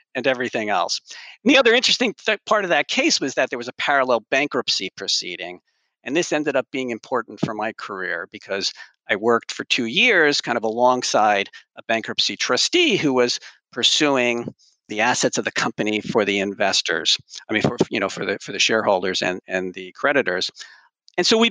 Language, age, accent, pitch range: English, 50-69, American, 100-135 Hz